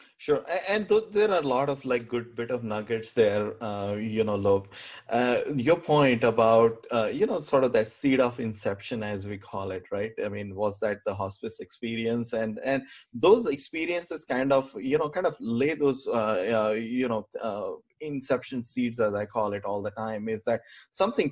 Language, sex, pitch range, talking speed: English, male, 110-135 Hz, 205 wpm